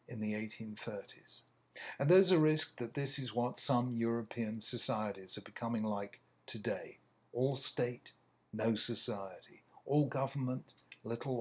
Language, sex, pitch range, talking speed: English, male, 115-150 Hz, 130 wpm